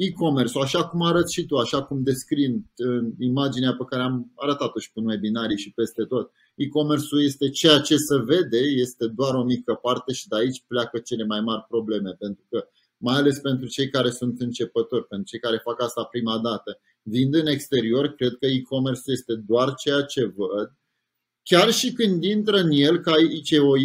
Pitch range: 130-180 Hz